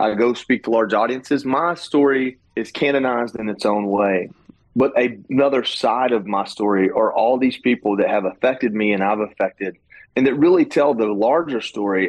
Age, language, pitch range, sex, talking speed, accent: 30-49, English, 105-135 Hz, male, 190 wpm, American